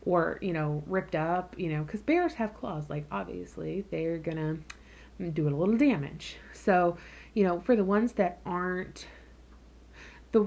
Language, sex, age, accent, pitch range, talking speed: English, female, 30-49, American, 165-210 Hz, 160 wpm